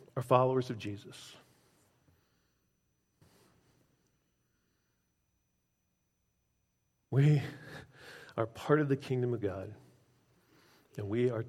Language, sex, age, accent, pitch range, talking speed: English, male, 50-69, American, 110-130 Hz, 75 wpm